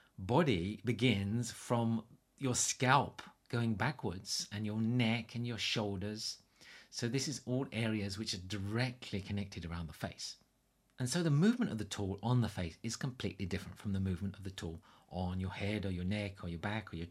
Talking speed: 195 wpm